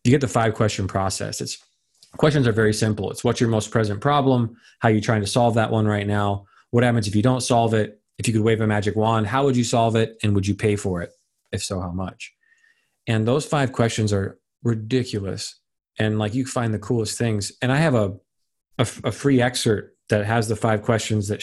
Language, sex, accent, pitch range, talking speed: English, male, American, 100-120 Hz, 230 wpm